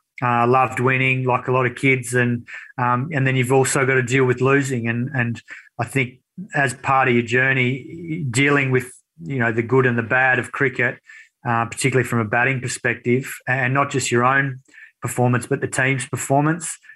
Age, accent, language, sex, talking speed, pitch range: 30-49, Australian, English, male, 200 wpm, 125-135 Hz